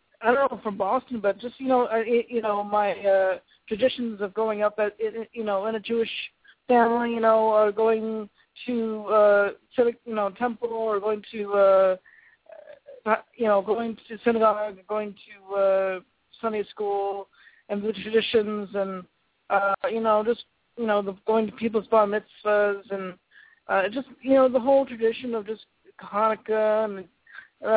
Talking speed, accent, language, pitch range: 165 wpm, American, English, 195-230 Hz